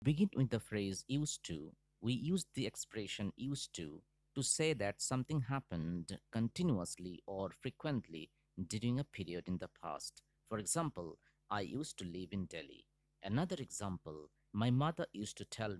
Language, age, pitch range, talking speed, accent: English, 50-69, 95-150 Hz, 155 wpm, Indian